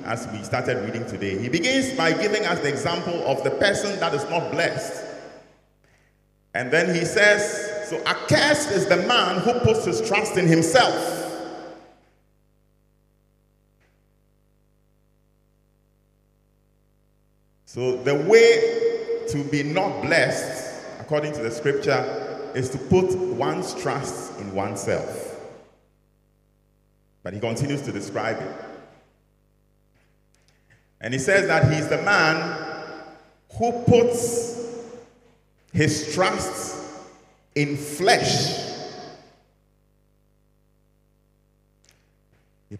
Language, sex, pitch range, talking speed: English, male, 140-180 Hz, 100 wpm